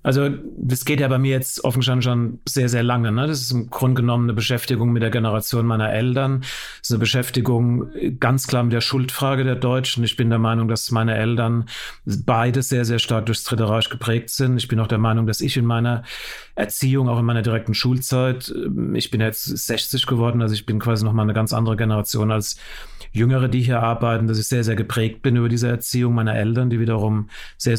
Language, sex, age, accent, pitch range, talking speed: German, male, 40-59, German, 115-130 Hz, 215 wpm